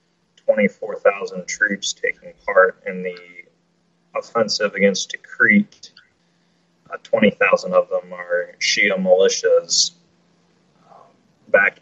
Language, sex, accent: English, male, American